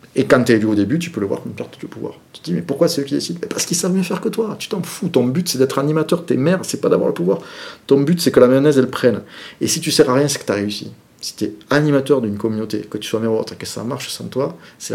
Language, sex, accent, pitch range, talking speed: French, male, French, 105-130 Hz, 340 wpm